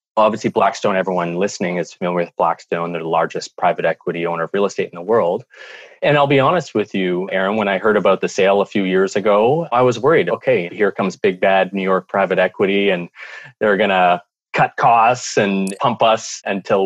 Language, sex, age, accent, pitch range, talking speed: English, male, 30-49, American, 95-120 Hz, 210 wpm